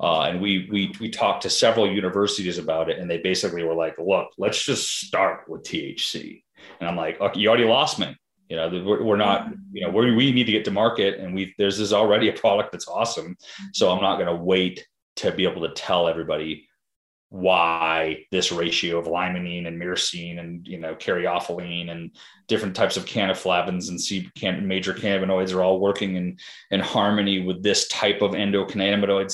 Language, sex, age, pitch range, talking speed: English, male, 30-49, 85-100 Hz, 195 wpm